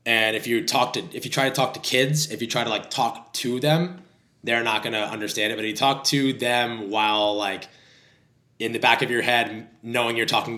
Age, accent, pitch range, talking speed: 20-39, American, 110-130 Hz, 245 wpm